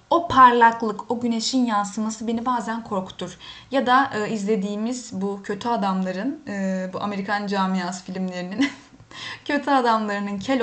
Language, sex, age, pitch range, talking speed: Turkish, female, 10-29, 205-255 Hz, 130 wpm